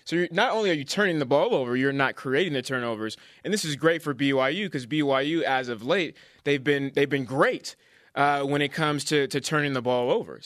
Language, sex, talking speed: English, male, 230 wpm